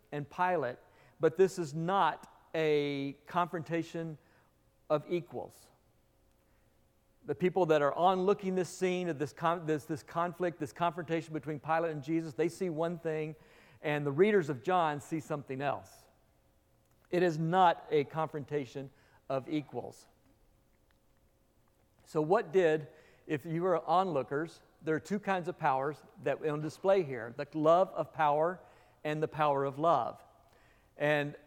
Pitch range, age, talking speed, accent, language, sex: 150-180 Hz, 50-69, 145 wpm, American, English, male